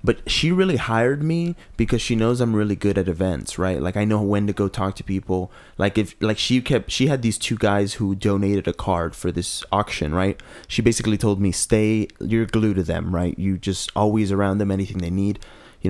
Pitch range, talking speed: 95-110 Hz, 225 wpm